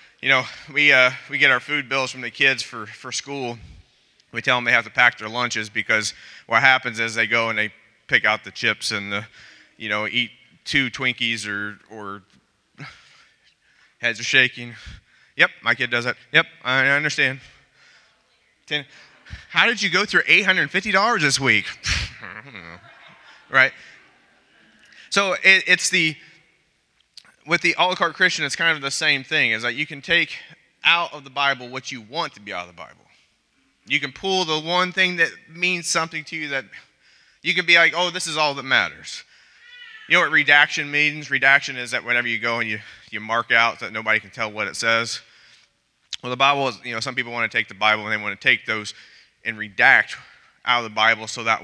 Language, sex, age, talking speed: English, male, 20-39, 205 wpm